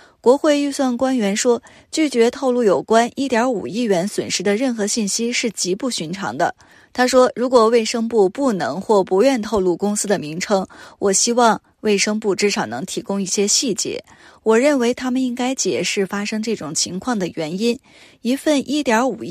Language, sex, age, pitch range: Chinese, female, 20-39, 195-245 Hz